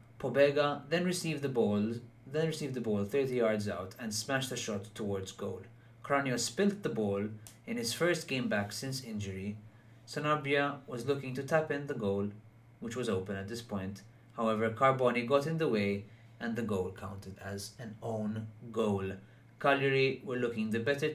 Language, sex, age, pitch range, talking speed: English, male, 30-49, 105-120 Hz, 175 wpm